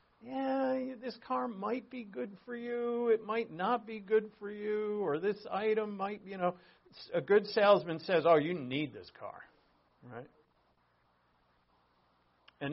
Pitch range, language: 125-185 Hz, English